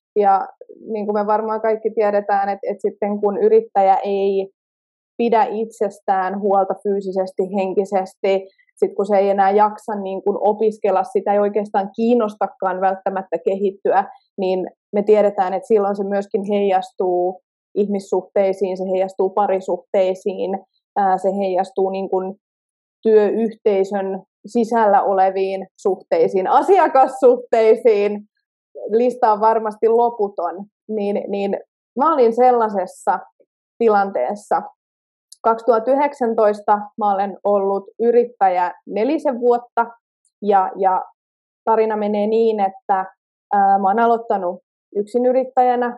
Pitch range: 195-225 Hz